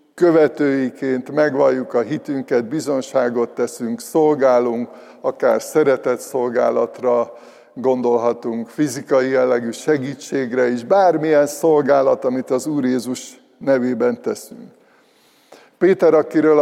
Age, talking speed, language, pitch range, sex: 60-79, 90 wpm, Hungarian, 125-150 Hz, male